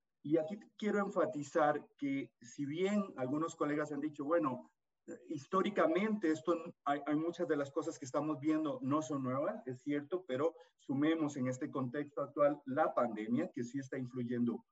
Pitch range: 125-160 Hz